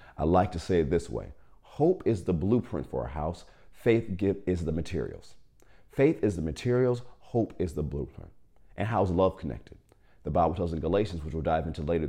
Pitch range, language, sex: 80-105 Hz, English, male